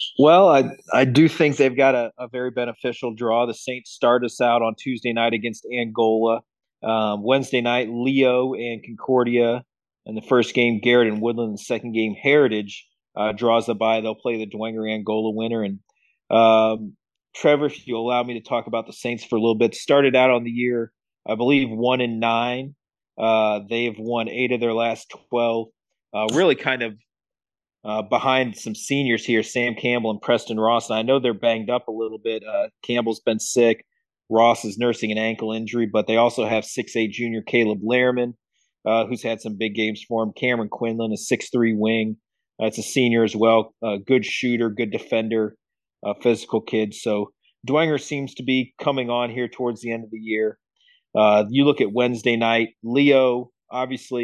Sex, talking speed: male, 190 wpm